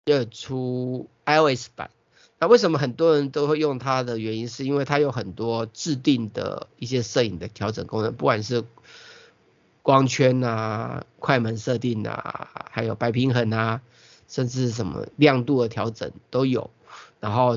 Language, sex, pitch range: Chinese, male, 115-140 Hz